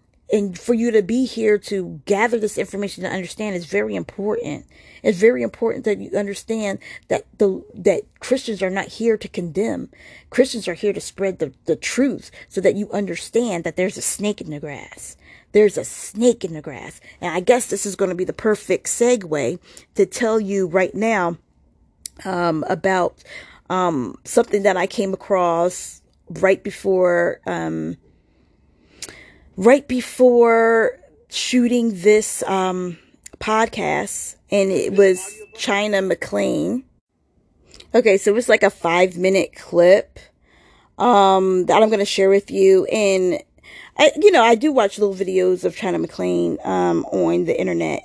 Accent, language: American, English